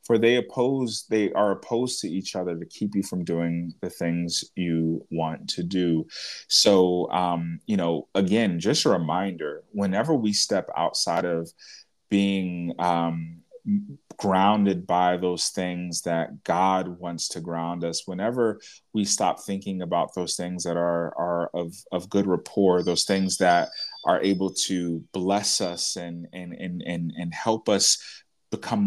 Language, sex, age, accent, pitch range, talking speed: English, male, 30-49, American, 85-100 Hz, 155 wpm